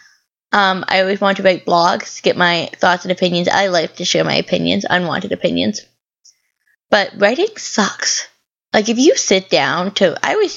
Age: 10-29